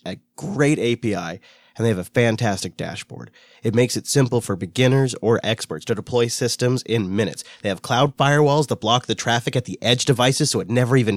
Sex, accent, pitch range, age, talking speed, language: male, American, 105-135 Hz, 30-49, 205 wpm, English